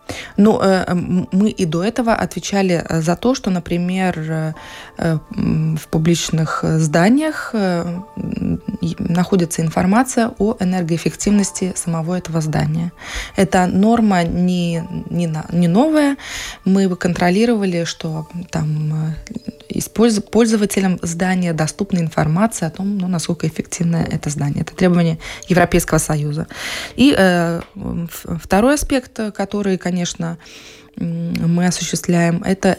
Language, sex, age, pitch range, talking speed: Russian, female, 20-39, 165-200 Hz, 100 wpm